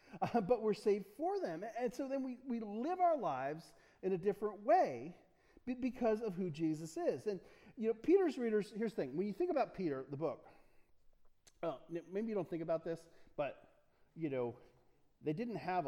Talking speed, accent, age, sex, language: 195 wpm, American, 40-59, male, English